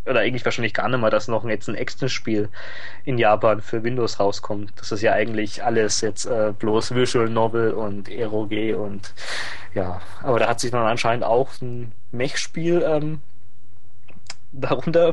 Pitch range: 105-130 Hz